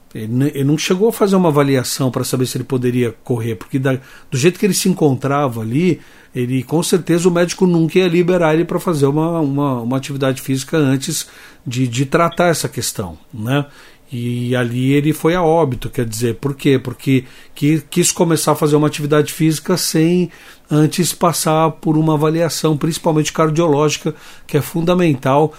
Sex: male